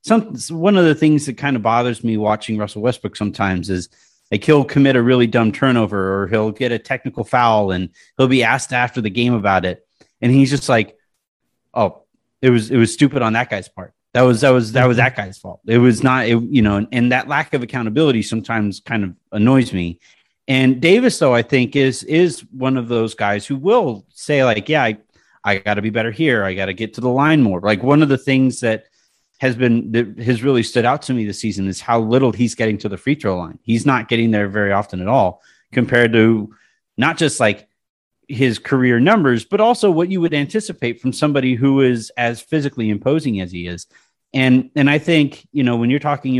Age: 30-49